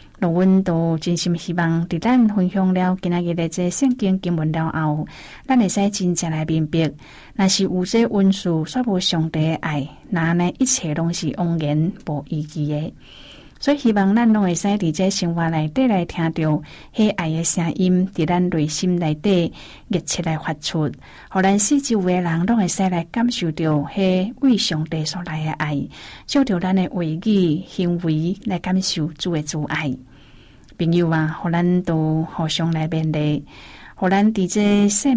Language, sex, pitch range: Chinese, female, 160-195 Hz